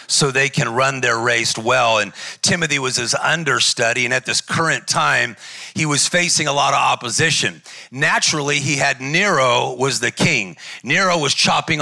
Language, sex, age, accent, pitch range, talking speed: English, male, 40-59, American, 145-180 Hz, 175 wpm